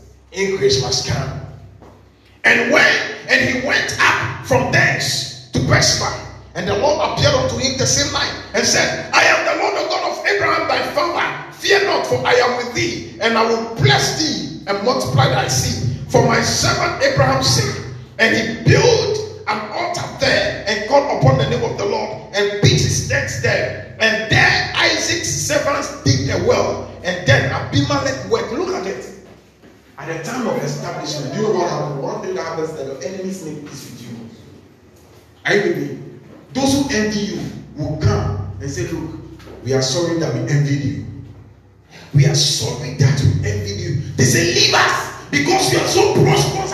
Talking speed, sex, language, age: 175 wpm, male, English, 40-59